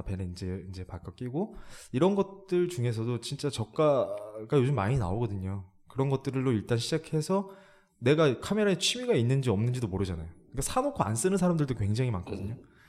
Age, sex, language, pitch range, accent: 20-39, male, Korean, 100-145 Hz, native